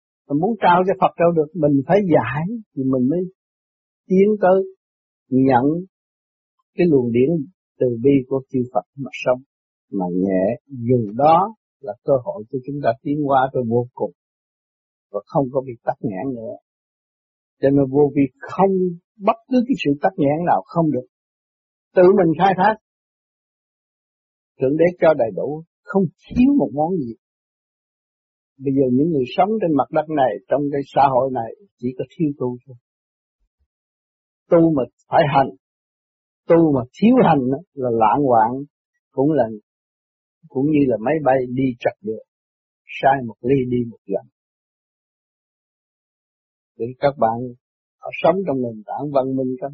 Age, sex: 60-79, male